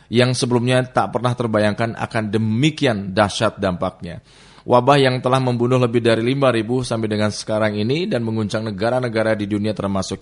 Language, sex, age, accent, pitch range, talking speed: Indonesian, male, 30-49, native, 100-120 Hz, 155 wpm